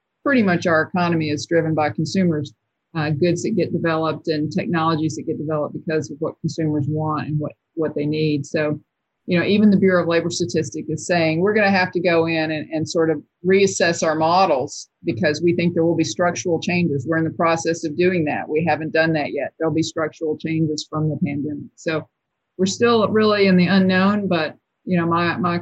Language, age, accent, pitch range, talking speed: English, 50-69, American, 160-185 Hz, 215 wpm